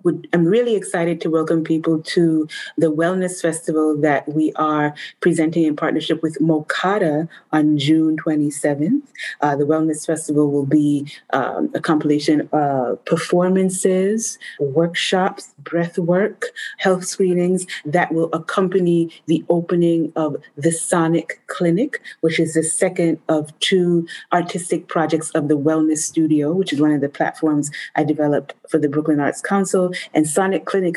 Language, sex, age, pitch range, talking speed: English, female, 30-49, 155-175 Hz, 145 wpm